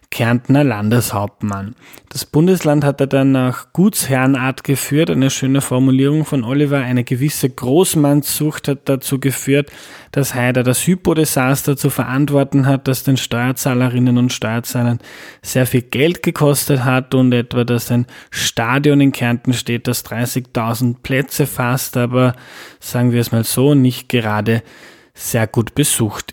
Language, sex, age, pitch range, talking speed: German, male, 20-39, 120-140 Hz, 140 wpm